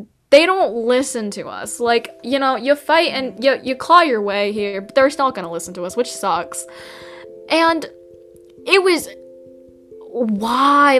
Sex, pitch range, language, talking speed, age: female, 210-270 Hz, English, 170 wpm, 10-29